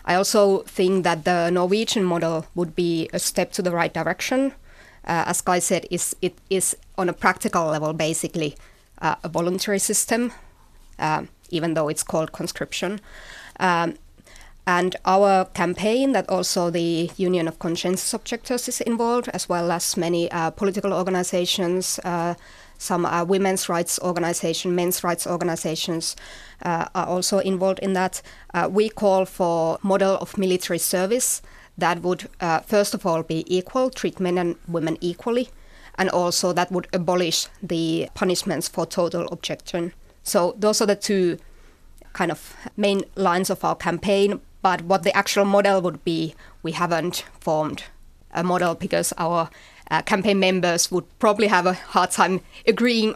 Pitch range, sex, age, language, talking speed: 170-195 Hz, female, 30-49, Finnish, 155 wpm